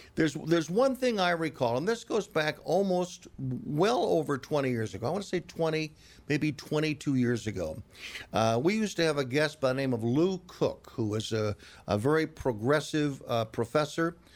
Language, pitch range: English, 130-180 Hz